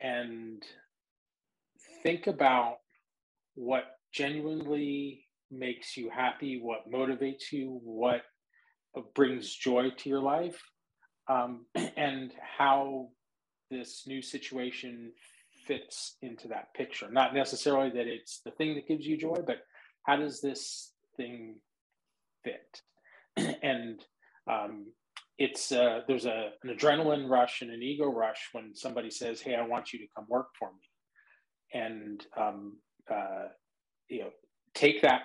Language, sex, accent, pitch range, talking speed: English, male, American, 115-135 Hz, 125 wpm